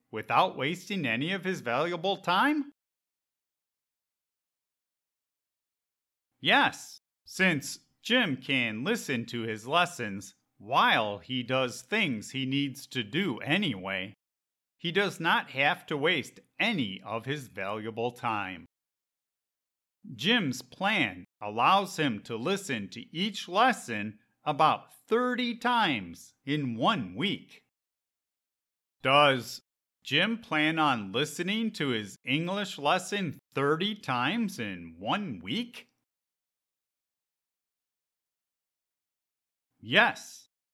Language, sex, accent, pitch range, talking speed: English, male, American, 115-190 Hz, 95 wpm